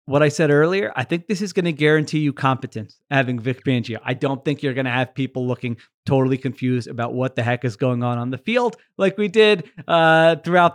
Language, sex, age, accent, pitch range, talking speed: English, male, 30-49, American, 130-155 Hz, 235 wpm